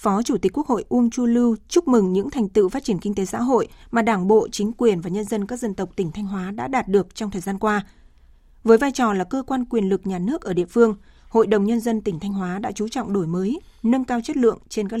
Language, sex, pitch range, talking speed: Vietnamese, female, 195-240 Hz, 285 wpm